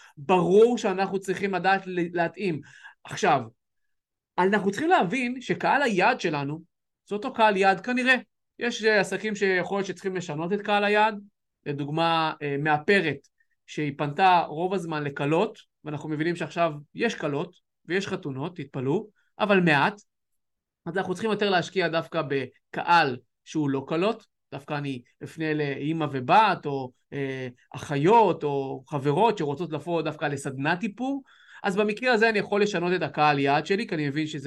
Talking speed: 145 wpm